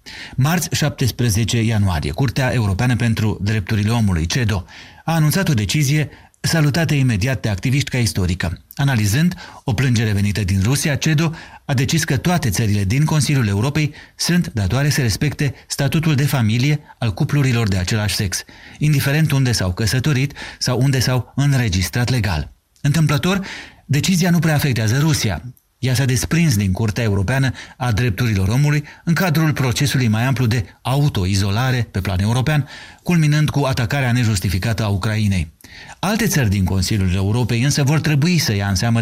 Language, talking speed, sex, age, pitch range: Romanian, 150 wpm, male, 30-49, 105-145 Hz